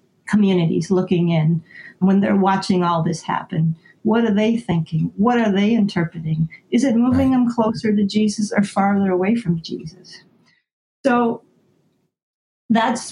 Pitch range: 180-210 Hz